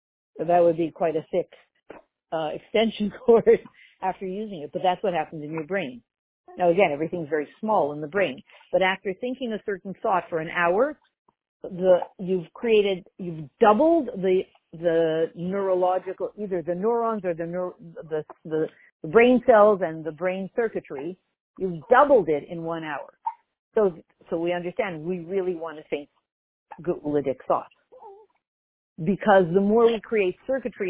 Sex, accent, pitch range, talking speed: female, American, 175-230 Hz, 160 wpm